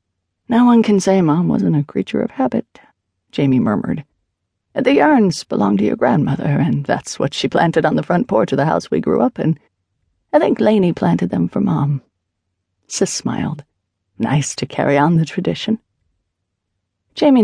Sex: female